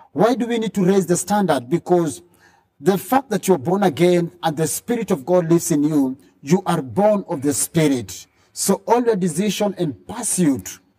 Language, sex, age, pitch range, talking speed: English, male, 50-69, 135-185 Hz, 195 wpm